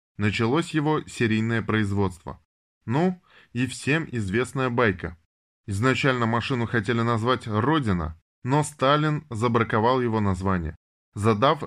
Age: 20-39